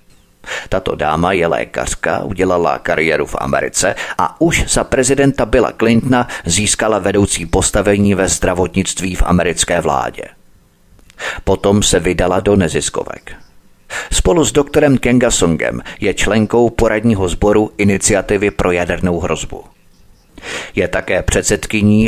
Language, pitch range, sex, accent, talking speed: Czech, 90-105 Hz, male, native, 115 wpm